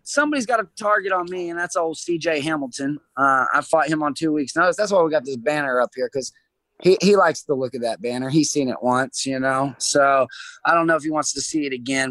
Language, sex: English, male